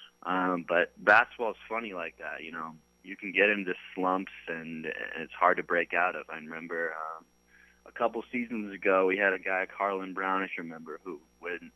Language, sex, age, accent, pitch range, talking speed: English, male, 20-39, American, 80-95 Hz, 195 wpm